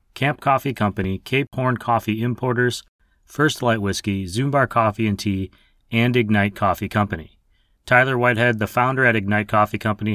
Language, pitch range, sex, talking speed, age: English, 95-120 Hz, male, 155 wpm, 30-49